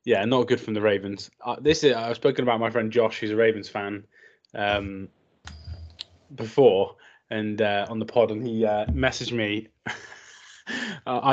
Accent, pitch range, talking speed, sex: British, 100-120 Hz, 170 wpm, male